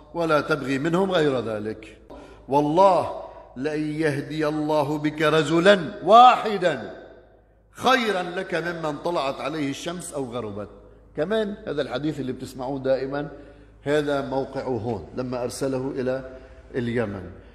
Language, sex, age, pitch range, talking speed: Arabic, male, 50-69, 130-160 Hz, 115 wpm